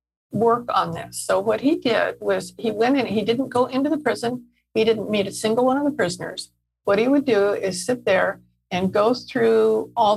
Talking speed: 220 wpm